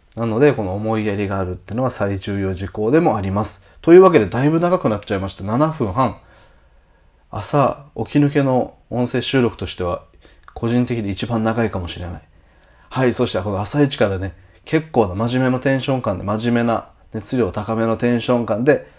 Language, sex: Japanese, male